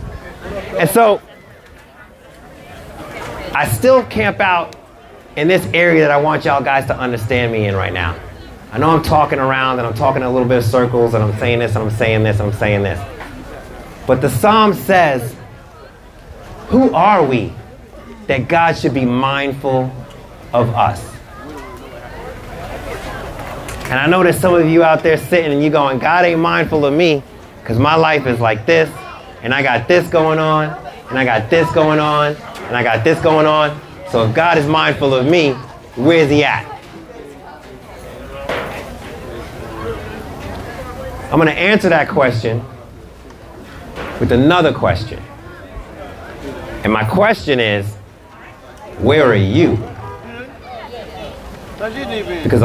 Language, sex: English, male